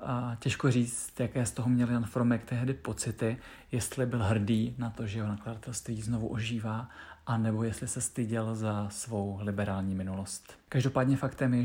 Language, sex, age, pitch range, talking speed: Czech, male, 40-59, 110-125 Hz, 160 wpm